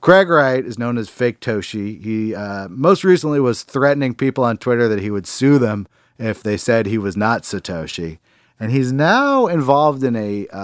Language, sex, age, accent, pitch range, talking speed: English, male, 40-59, American, 100-125 Hz, 190 wpm